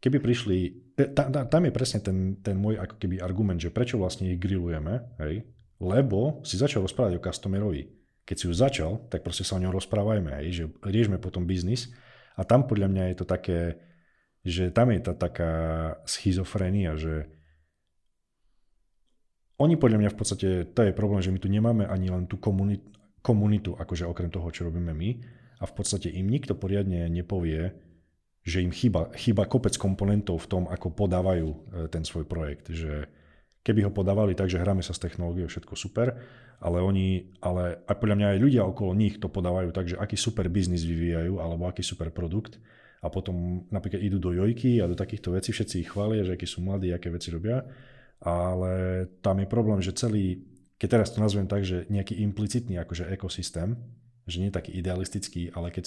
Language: Slovak